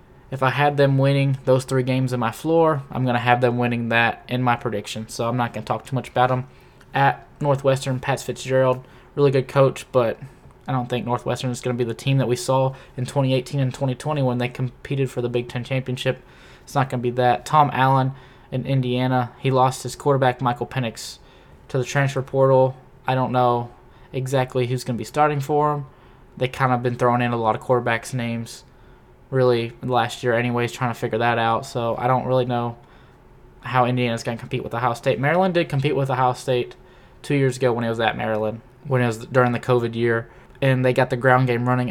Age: 10-29